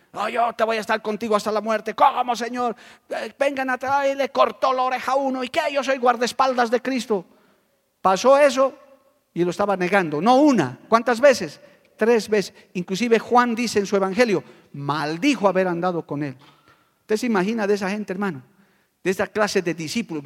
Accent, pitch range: Spanish, 190-255 Hz